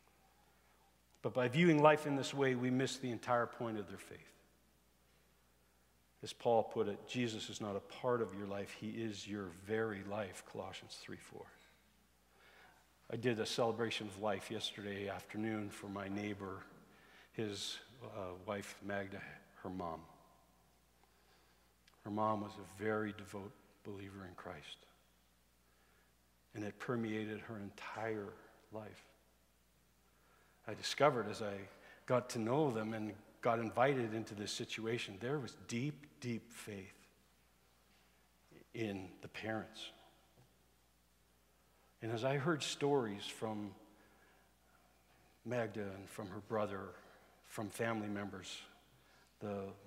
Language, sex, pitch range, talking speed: English, male, 90-115 Hz, 125 wpm